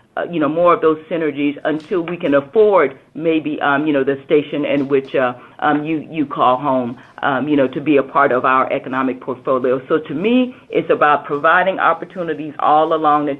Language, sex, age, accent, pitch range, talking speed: English, female, 40-59, American, 135-160 Hz, 205 wpm